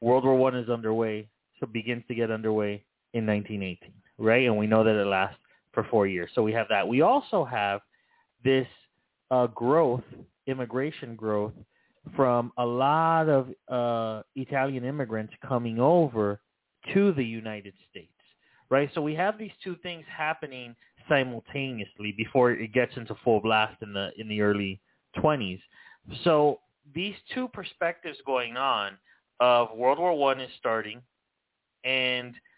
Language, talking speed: English, 155 wpm